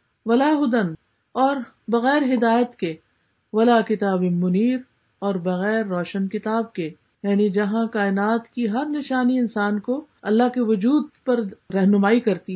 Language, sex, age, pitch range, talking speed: Urdu, female, 50-69, 210-255 Hz, 130 wpm